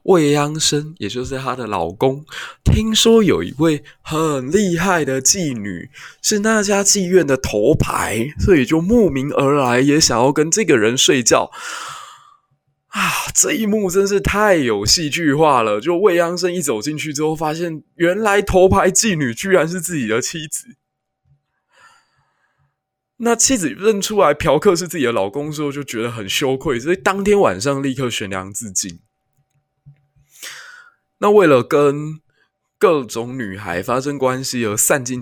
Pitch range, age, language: 110-160 Hz, 20-39, Chinese